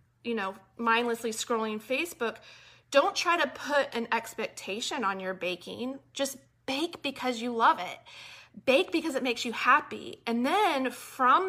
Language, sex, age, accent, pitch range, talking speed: English, female, 30-49, American, 220-315 Hz, 150 wpm